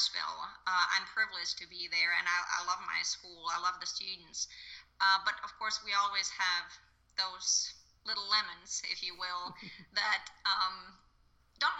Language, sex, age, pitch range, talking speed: English, female, 20-39, 170-205 Hz, 165 wpm